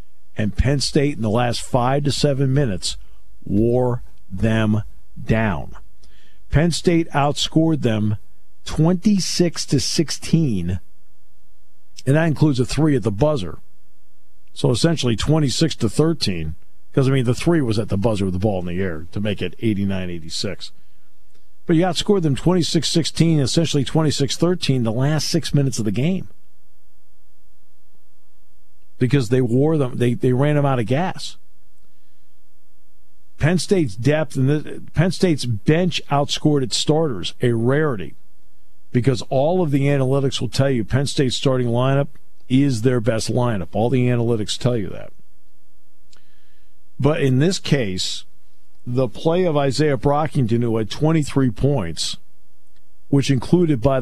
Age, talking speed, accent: 50-69, 140 wpm, American